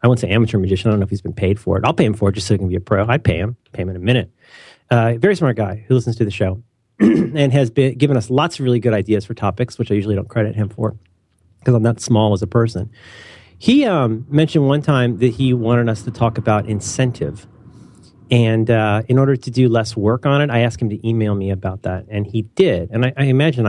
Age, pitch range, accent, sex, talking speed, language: 40-59, 105-130 Hz, American, male, 270 wpm, English